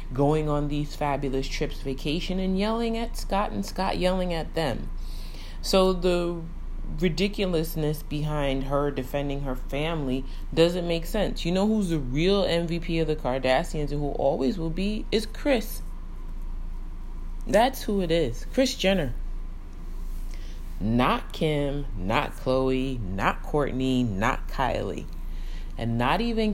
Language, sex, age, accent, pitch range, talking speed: English, female, 30-49, American, 125-170 Hz, 135 wpm